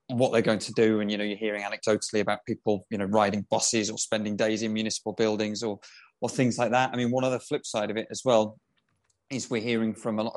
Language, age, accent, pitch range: English, 20-39, British, 110-120 Hz